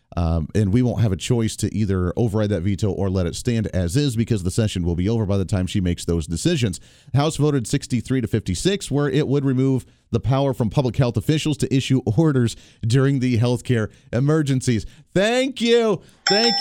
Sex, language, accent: male, English, American